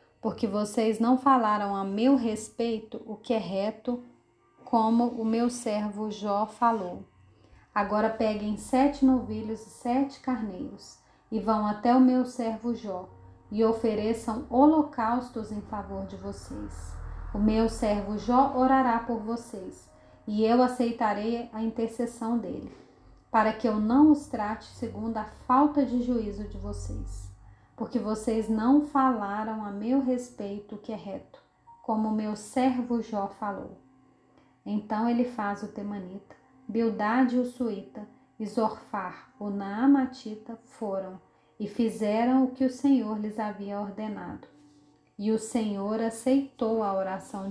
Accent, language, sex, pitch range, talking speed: Brazilian, Portuguese, female, 205-240 Hz, 135 wpm